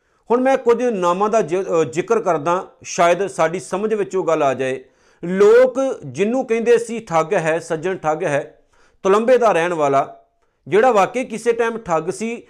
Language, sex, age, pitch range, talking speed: Punjabi, male, 50-69, 175-225 Hz, 165 wpm